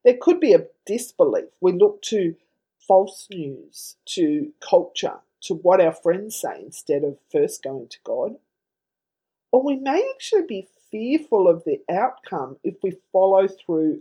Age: 40-59